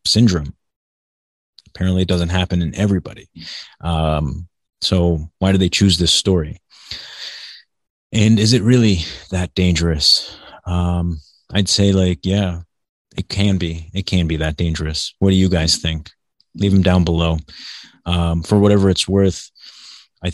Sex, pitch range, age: male, 85-100 Hz, 30-49